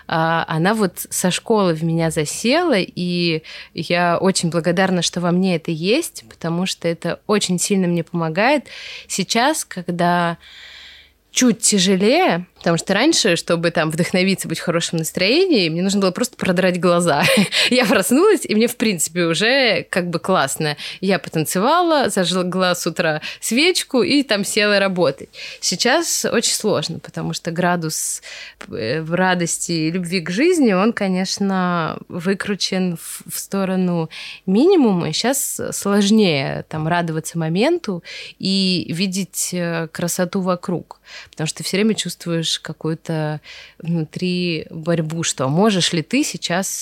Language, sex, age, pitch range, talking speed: Russian, female, 20-39, 165-195 Hz, 135 wpm